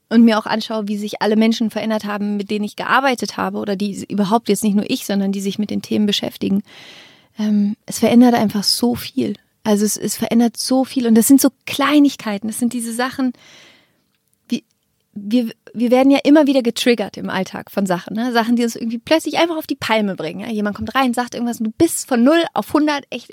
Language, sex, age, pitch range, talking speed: German, female, 30-49, 210-265 Hz, 215 wpm